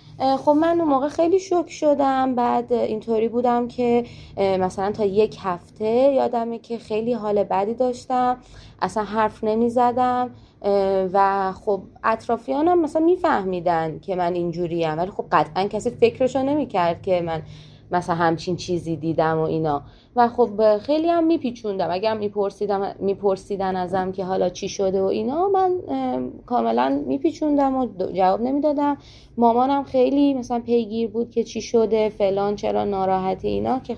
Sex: female